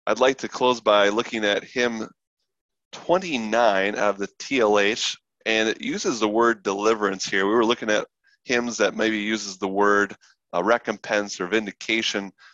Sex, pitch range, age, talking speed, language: male, 95-115 Hz, 20-39, 165 wpm, English